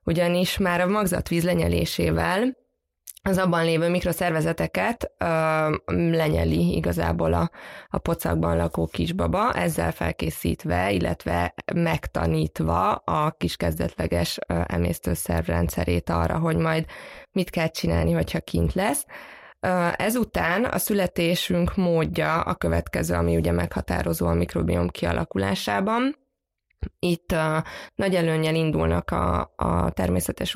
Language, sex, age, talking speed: Hungarian, female, 20-39, 100 wpm